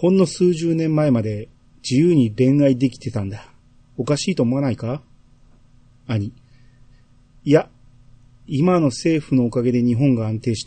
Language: Japanese